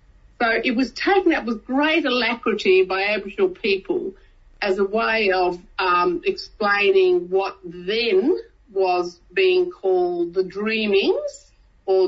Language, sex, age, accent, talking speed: English, female, 50-69, Australian, 125 wpm